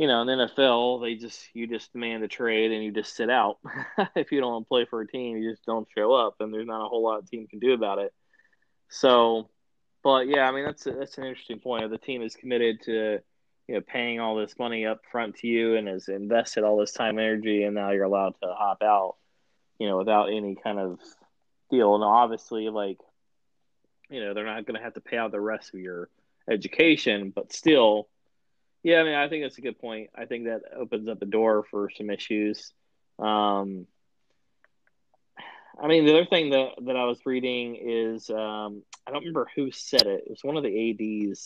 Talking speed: 225 wpm